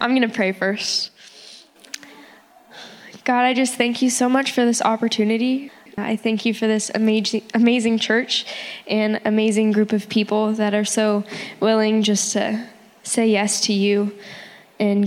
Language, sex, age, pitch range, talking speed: English, female, 10-29, 205-230 Hz, 155 wpm